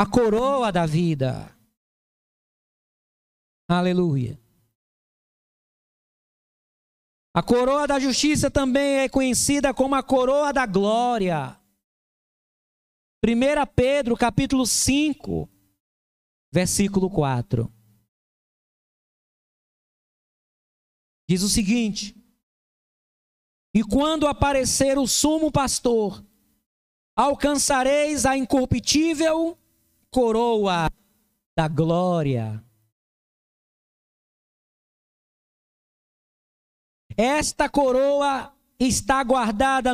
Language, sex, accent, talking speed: Portuguese, male, Brazilian, 65 wpm